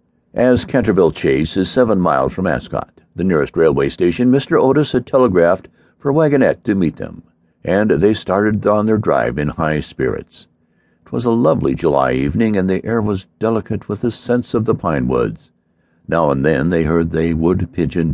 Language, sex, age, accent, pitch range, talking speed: English, male, 60-79, American, 85-115 Hz, 185 wpm